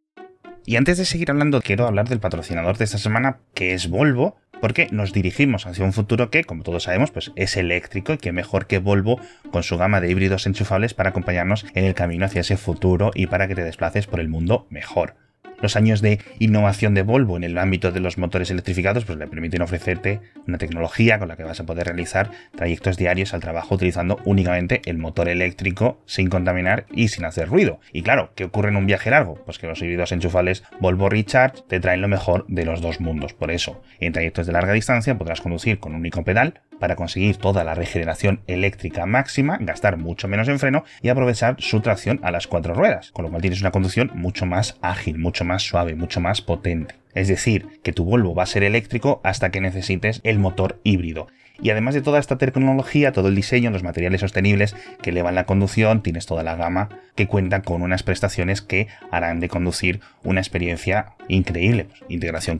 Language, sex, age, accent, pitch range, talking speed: Spanish, male, 20-39, Spanish, 90-110 Hz, 205 wpm